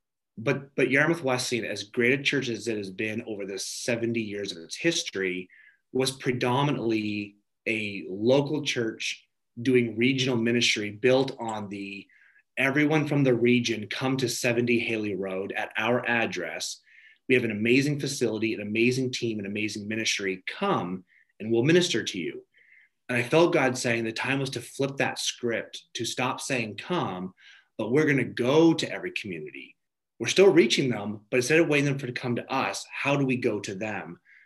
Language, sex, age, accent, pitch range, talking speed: English, male, 30-49, American, 115-135 Hz, 180 wpm